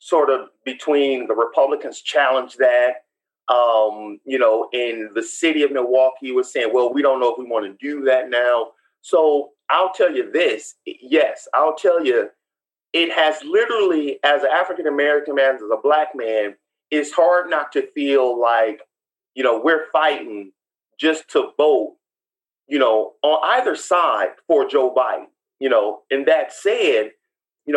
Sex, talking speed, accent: male, 160 wpm, American